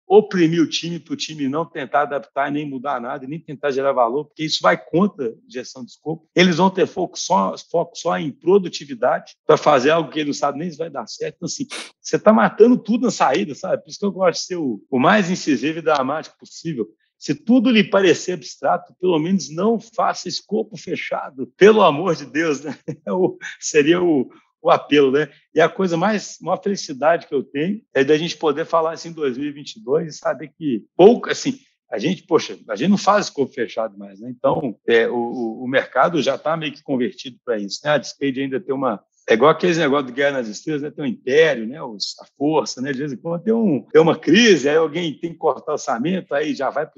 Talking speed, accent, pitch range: 230 wpm, Brazilian, 140-185 Hz